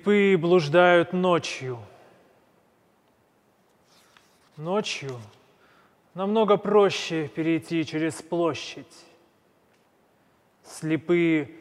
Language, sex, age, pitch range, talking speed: Russian, male, 30-49, 150-180 Hz, 50 wpm